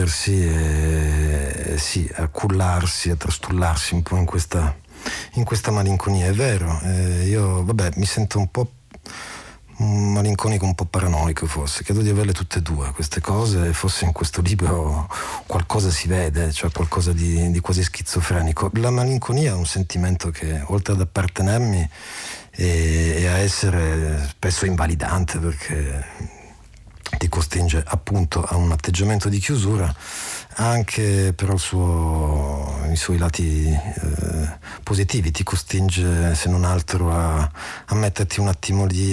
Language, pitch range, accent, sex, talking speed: Italian, 80-95 Hz, native, male, 140 wpm